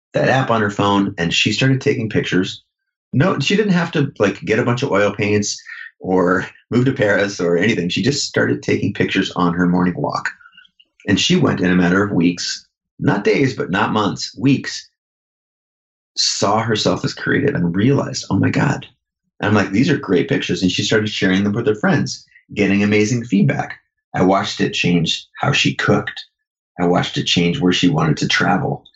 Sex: male